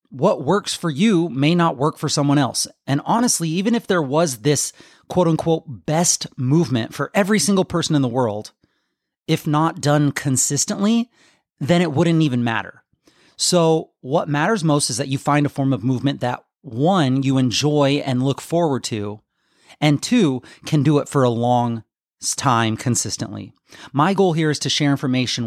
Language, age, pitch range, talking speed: English, 30-49, 130-165 Hz, 175 wpm